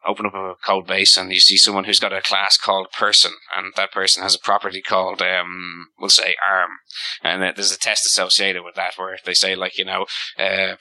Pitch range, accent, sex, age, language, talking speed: 95-105 Hz, Irish, male, 20-39, English, 240 wpm